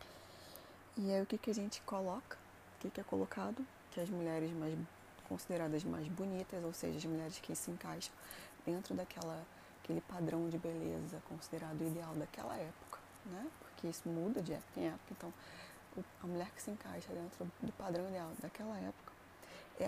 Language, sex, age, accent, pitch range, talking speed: Portuguese, female, 20-39, Brazilian, 155-185 Hz, 170 wpm